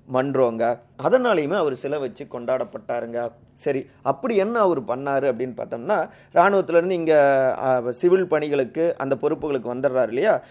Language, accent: Tamil, native